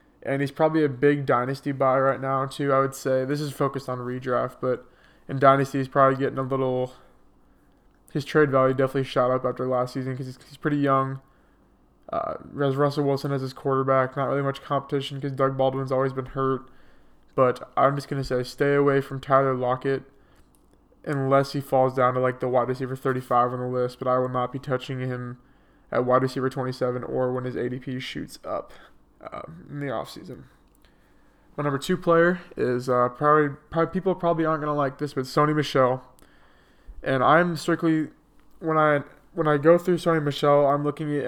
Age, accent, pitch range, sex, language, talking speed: 20-39, American, 130-150 Hz, male, English, 195 wpm